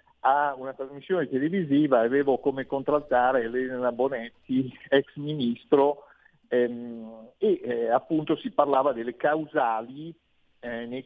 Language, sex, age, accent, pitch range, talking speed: Italian, male, 50-69, native, 130-180 Hz, 115 wpm